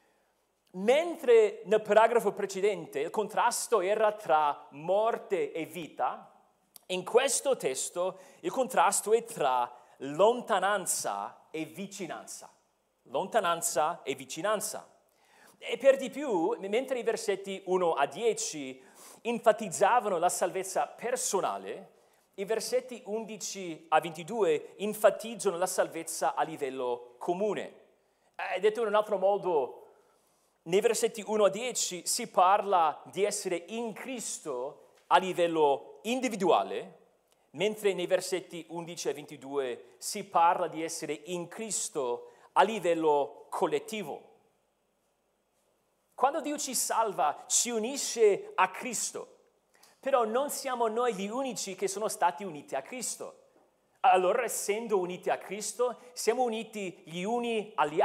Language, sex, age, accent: Italian, male, 40-59, native